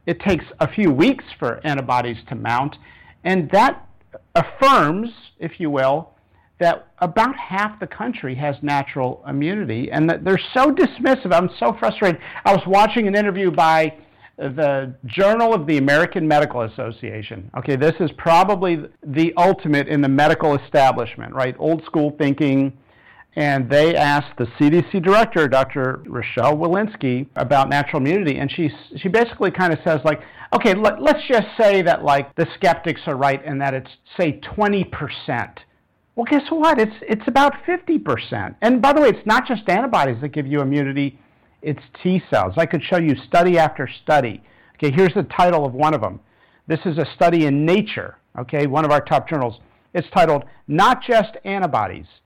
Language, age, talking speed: English, 50-69, 170 wpm